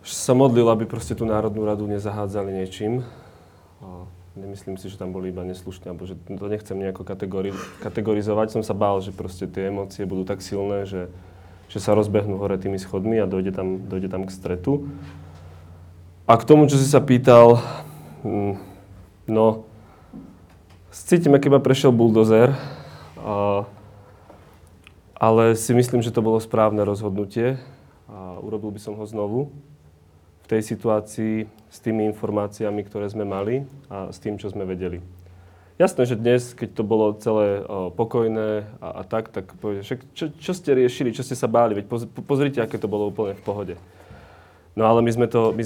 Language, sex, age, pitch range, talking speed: Slovak, male, 20-39, 95-115 Hz, 165 wpm